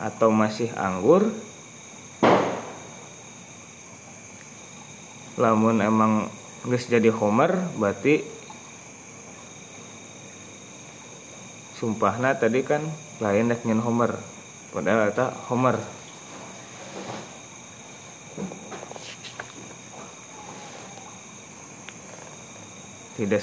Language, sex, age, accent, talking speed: Indonesian, male, 30-49, native, 45 wpm